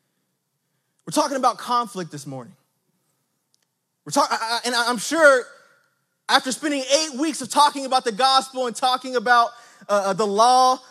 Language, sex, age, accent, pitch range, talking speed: English, male, 20-39, American, 180-250 Hz, 150 wpm